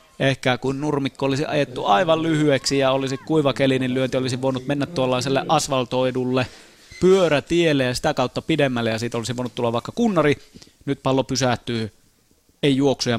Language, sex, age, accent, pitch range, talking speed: Finnish, male, 30-49, native, 115-140 Hz, 160 wpm